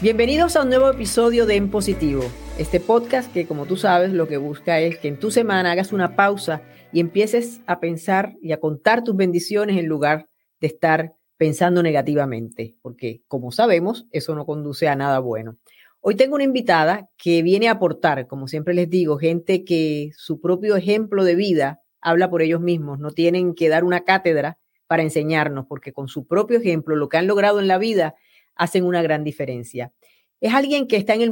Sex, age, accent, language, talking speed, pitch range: female, 40-59, American, Spanish, 195 wpm, 160-205 Hz